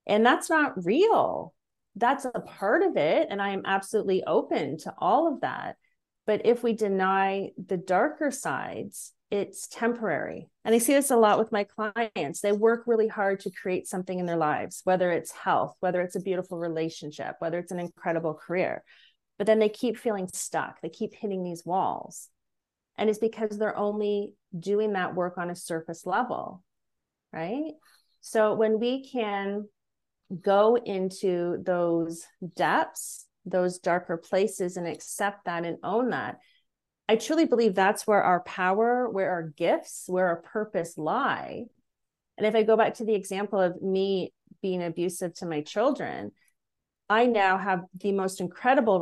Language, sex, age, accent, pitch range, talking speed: English, female, 30-49, American, 175-220 Hz, 165 wpm